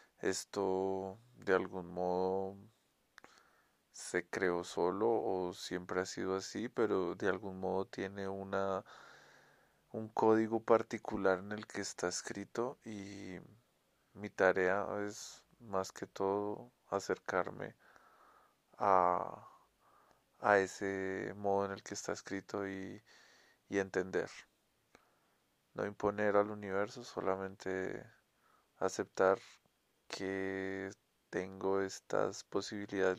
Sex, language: male, Spanish